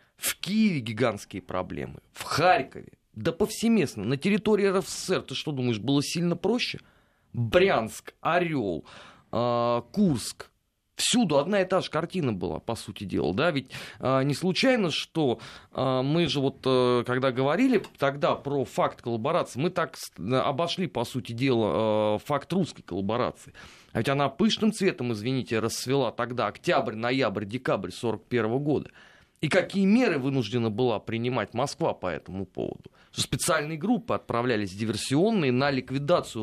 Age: 30-49